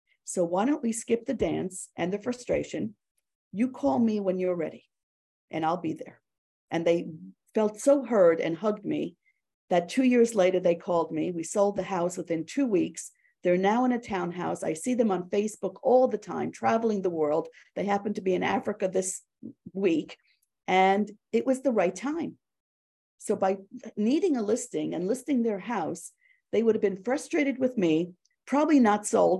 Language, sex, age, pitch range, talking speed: English, female, 50-69, 180-240 Hz, 185 wpm